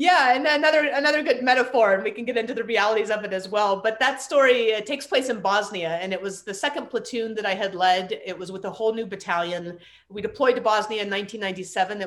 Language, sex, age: English, female, 30-49